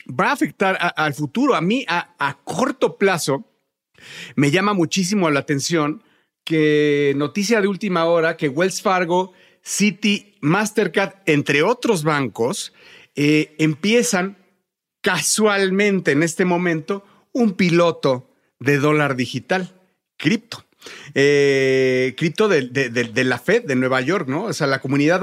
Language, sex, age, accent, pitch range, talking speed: Spanish, male, 40-59, Mexican, 160-220 Hz, 135 wpm